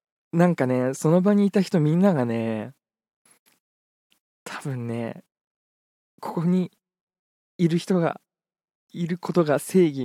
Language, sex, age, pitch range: Japanese, male, 20-39, 115-175 Hz